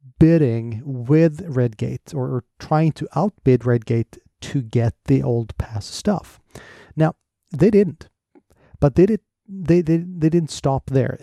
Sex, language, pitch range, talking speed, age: male, English, 120-155 Hz, 150 wpm, 30-49